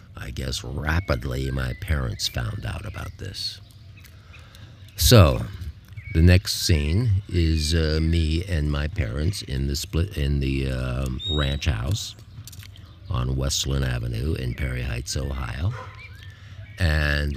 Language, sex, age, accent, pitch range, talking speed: English, male, 50-69, American, 75-100 Hz, 120 wpm